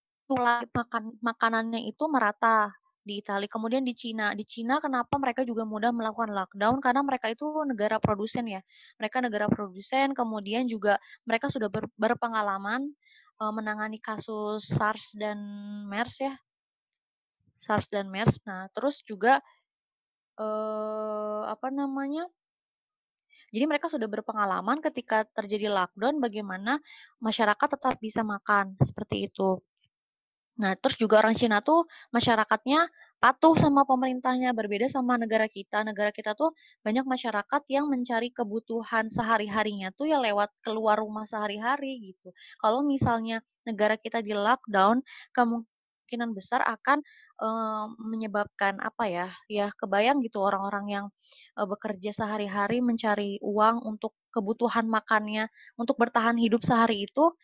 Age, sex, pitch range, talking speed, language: 20-39, female, 210-255 Hz, 130 wpm, Indonesian